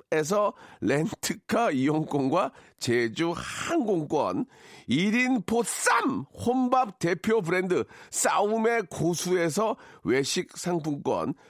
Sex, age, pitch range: male, 40-59, 180-250 Hz